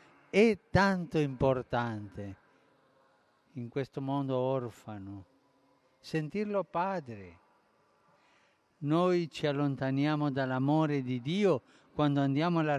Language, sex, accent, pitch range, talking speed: Italian, male, native, 130-185 Hz, 85 wpm